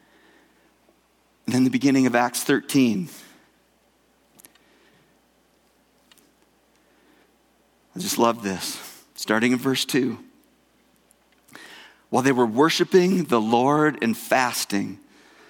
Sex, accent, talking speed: male, American, 90 wpm